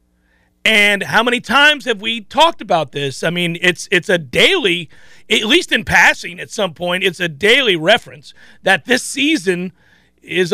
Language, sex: English, male